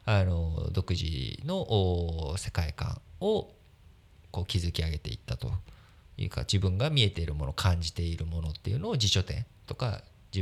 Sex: male